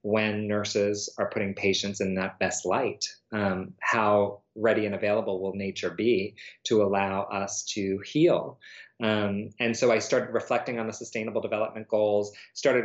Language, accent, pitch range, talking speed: English, American, 100-115 Hz, 160 wpm